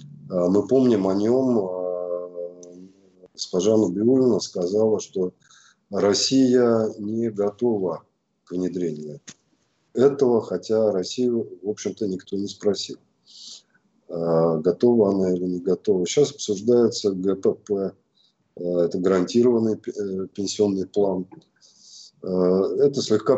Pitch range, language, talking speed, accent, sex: 95-120 Hz, Russian, 90 wpm, native, male